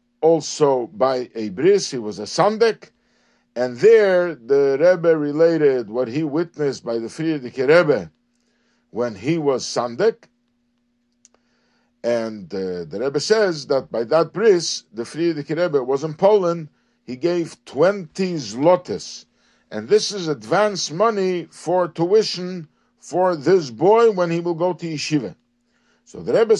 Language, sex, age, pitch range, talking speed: English, male, 50-69, 140-190 Hz, 140 wpm